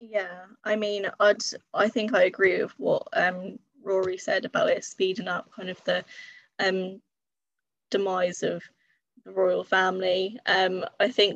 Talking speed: 155 wpm